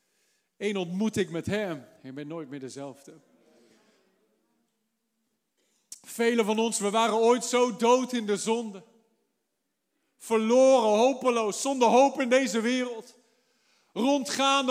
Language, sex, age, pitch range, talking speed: Dutch, male, 50-69, 220-275 Hz, 120 wpm